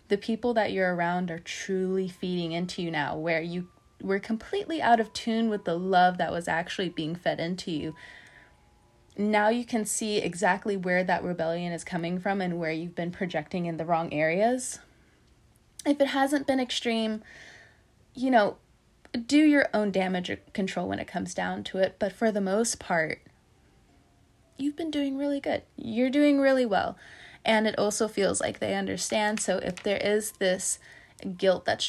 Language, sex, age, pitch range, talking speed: English, female, 20-39, 175-225 Hz, 175 wpm